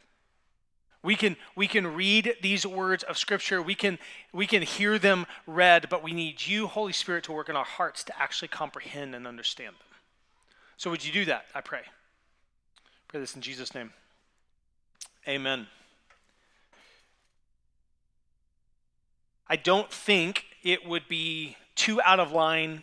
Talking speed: 150 wpm